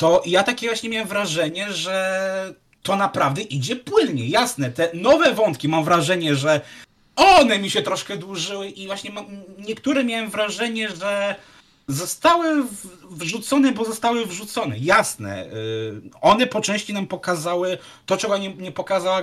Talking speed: 140 wpm